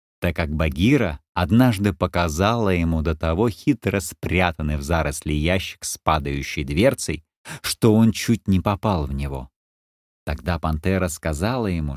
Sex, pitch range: male, 80-115 Hz